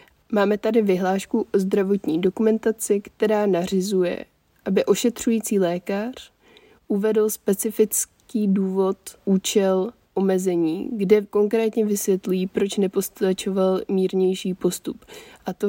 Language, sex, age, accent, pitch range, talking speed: Czech, female, 20-39, native, 185-205 Hz, 95 wpm